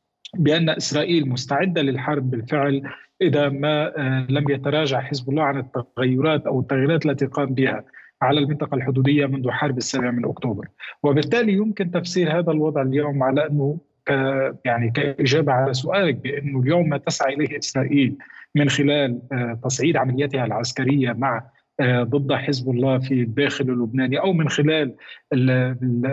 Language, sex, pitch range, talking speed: Arabic, male, 130-150 Hz, 140 wpm